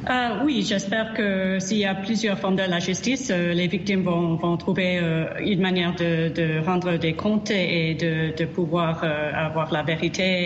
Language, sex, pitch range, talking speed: French, female, 165-190 Hz, 190 wpm